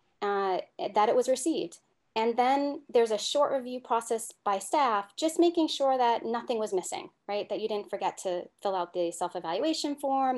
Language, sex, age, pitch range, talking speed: English, female, 30-49, 205-265 Hz, 190 wpm